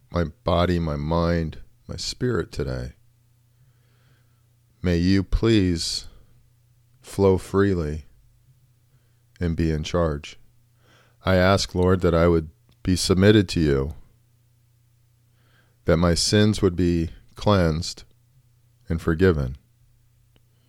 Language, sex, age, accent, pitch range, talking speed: English, male, 40-59, American, 85-120 Hz, 100 wpm